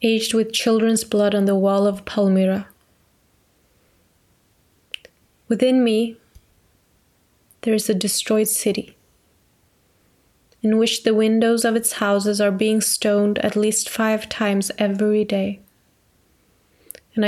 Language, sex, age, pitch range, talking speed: Swedish, female, 20-39, 205-330 Hz, 115 wpm